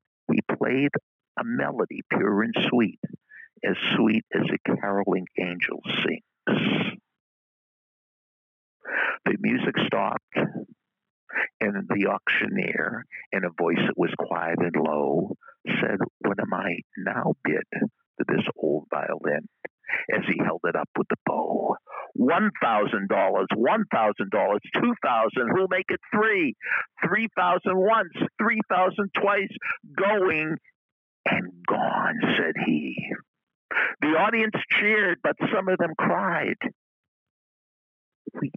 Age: 60-79